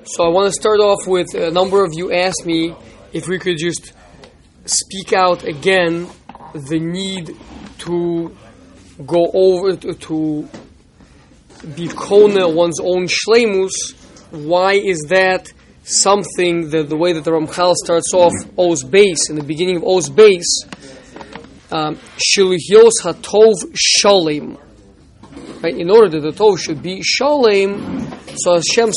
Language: English